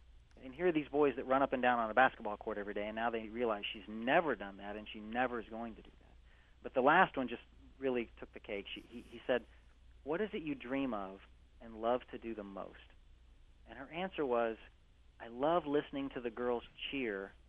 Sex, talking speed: male, 235 wpm